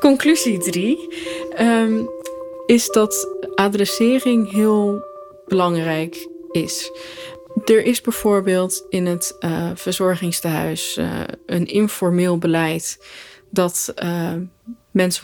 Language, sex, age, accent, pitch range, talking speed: Dutch, female, 20-39, Dutch, 175-215 Hz, 90 wpm